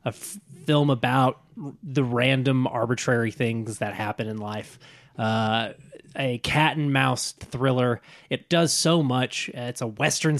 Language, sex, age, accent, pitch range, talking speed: English, male, 20-39, American, 115-140 Hz, 145 wpm